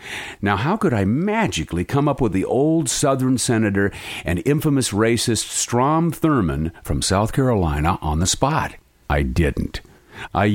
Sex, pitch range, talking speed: male, 95-130 Hz, 150 wpm